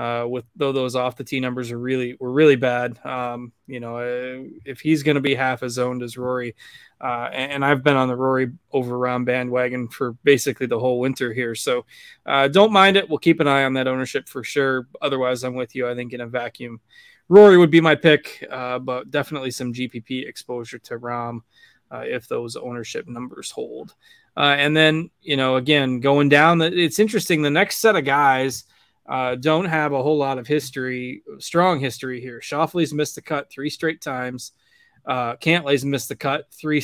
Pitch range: 125-155 Hz